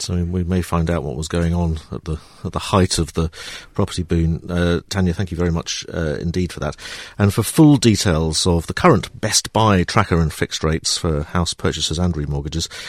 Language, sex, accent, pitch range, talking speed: English, male, British, 80-110 Hz, 220 wpm